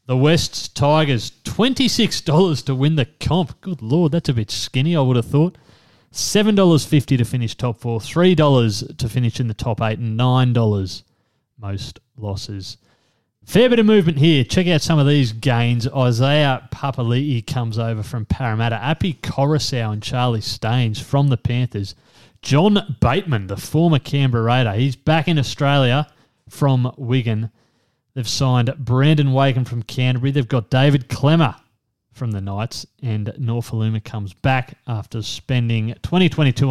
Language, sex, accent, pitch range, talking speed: English, male, Australian, 115-140 Hz, 150 wpm